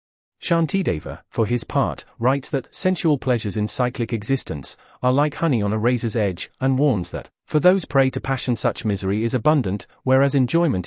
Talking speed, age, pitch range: 175 wpm, 40-59, 110-140 Hz